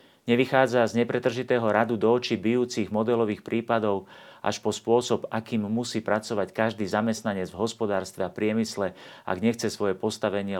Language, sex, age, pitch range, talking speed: Slovak, male, 40-59, 100-115 Hz, 140 wpm